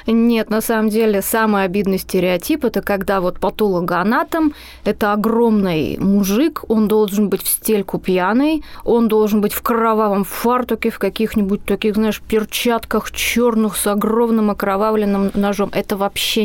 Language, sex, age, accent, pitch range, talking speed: Russian, female, 20-39, native, 195-230 Hz, 140 wpm